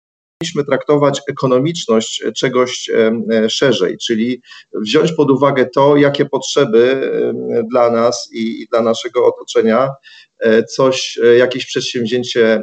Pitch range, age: 115-140 Hz, 40-59